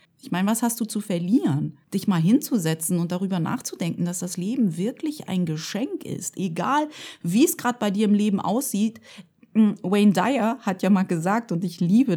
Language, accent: German, German